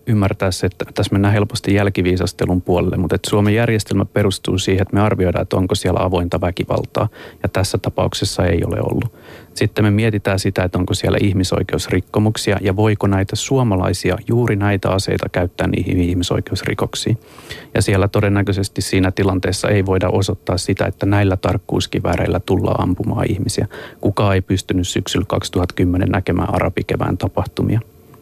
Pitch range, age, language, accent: 95-105 Hz, 30-49, Finnish, native